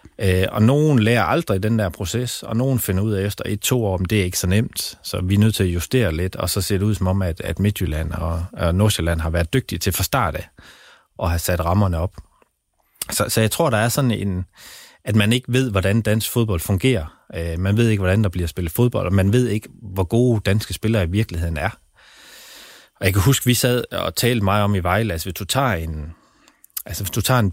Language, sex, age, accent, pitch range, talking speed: Danish, male, 30-49, native, 90-115 Hz, 240 wpm